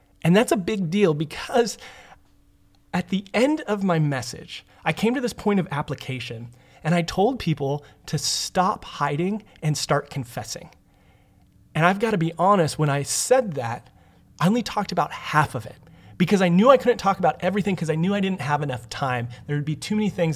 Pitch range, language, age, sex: 140-195 Hz, English, 30-49, male